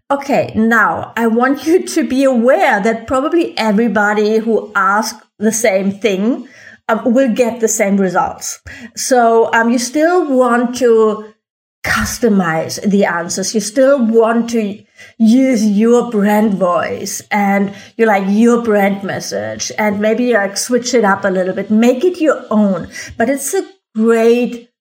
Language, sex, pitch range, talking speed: English, female, 210-255 Hz, 150 wpm